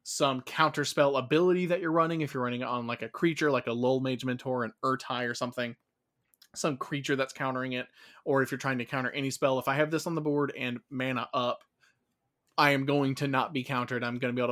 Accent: American